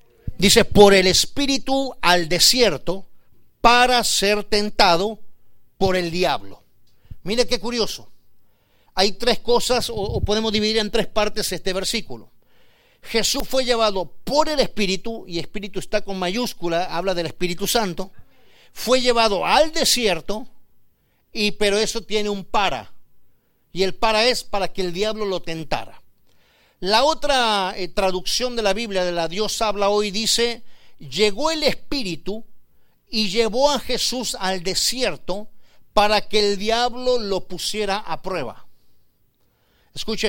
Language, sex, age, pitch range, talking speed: Spanish, male, 50-69, 185-235 Hz, 135 wpm